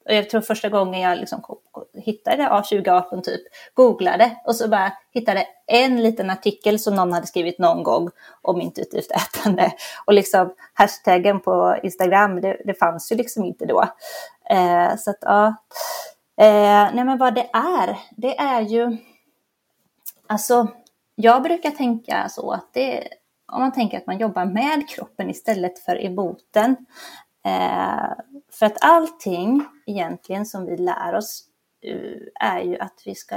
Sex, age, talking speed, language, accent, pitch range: female, 30-49, 145 wpm, English, Swedish, 195-255 Hz